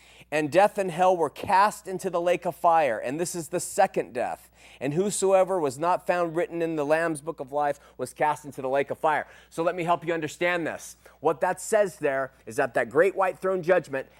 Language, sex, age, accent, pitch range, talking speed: English, male, 30-49, American, 135-185 Hz, 230 wpm